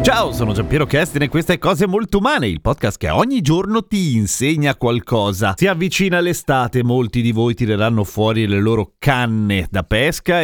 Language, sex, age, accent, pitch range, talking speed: Italian, male, 40-59, native, 115-155 Hz, 185 wpm